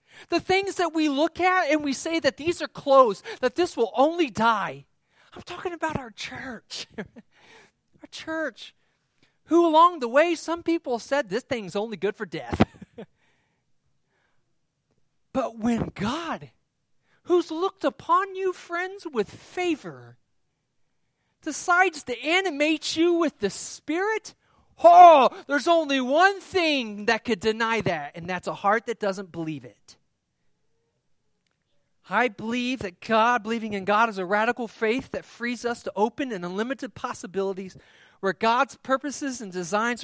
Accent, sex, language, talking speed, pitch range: American, male, English, 145 wpm, 195-290 Hz